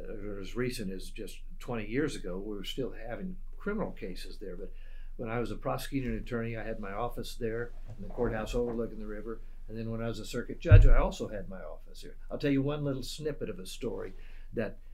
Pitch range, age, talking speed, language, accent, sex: 110-145 Hz, 60-79, 230 wpm, English, American, male